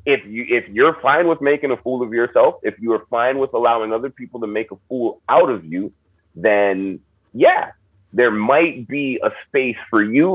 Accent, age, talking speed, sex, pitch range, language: American, 30-49, 195 wpm, male, 110-145 Hz, English